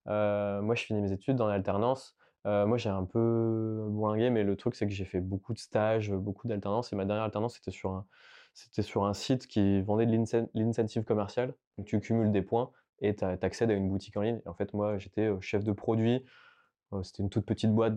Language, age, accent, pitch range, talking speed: French, 20-39, French, 100-115 Hz, 225 wpm